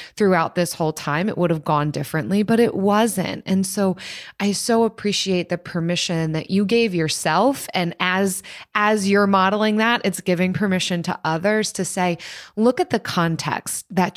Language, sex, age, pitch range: English, female, 20-39, 170-205 Hz